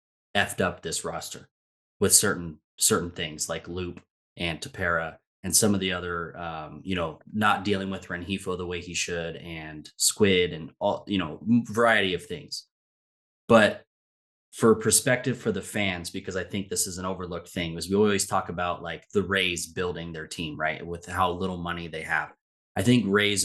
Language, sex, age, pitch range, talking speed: English, male, 20-39, 85-105 Hz, 185 wpm